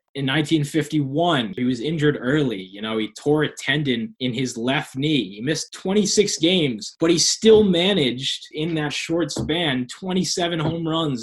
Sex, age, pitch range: male, 20-39, 125-165 Hz